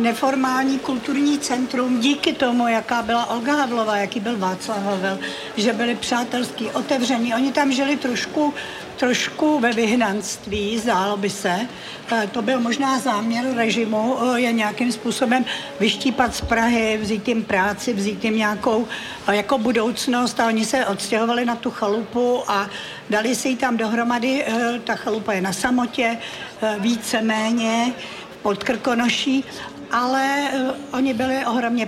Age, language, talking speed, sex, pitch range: 60-79, Czech, 130 wpm, female, 220-245 Hz